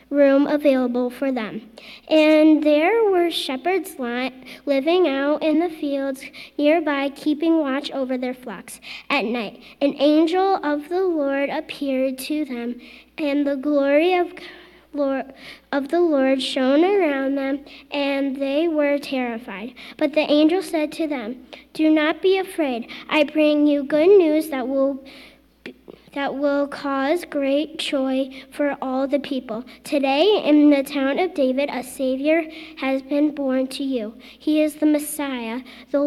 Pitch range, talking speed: 265-310 Hz, 145 wpm